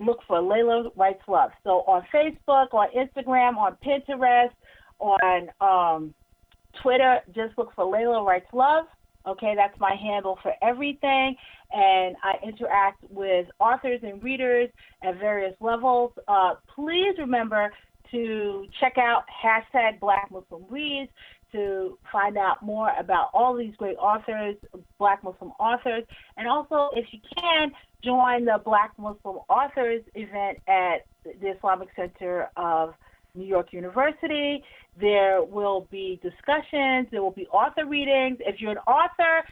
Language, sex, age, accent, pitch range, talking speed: English, female, 40-59, American, 195-260 Hz, 140 wpm